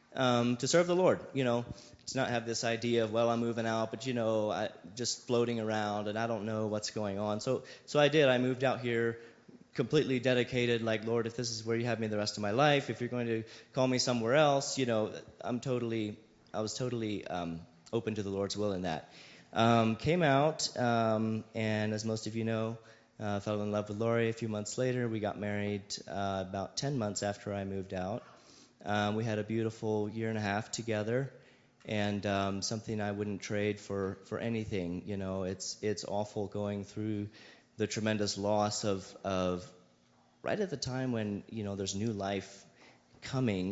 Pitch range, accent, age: 100-120 Hz, American, 30-49